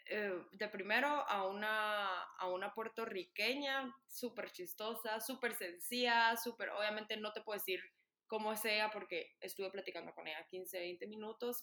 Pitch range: 200-255 Hz